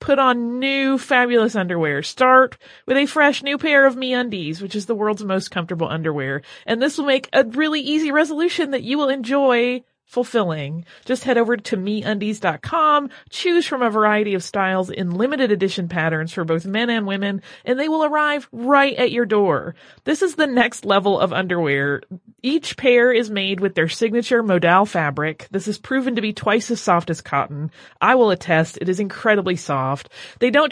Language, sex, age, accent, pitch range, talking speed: English, female, 30-49, American, 190-270 Hz, 190 wpm